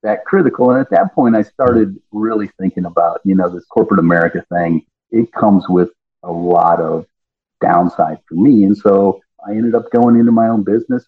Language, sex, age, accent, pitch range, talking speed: English, male, 50-69, American, 95-115 Hz, 195 wpm